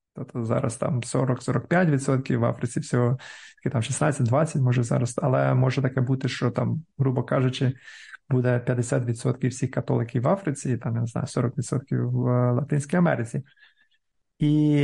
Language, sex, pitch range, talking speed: Ukrainian, male, 125-150 Hz, 140 wpm